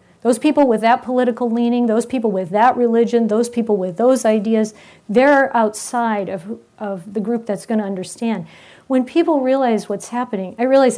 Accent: American